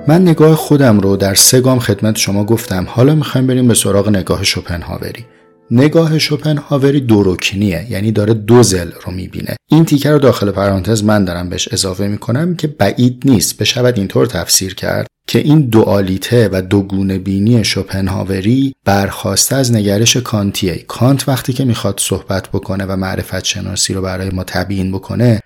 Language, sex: Persian, male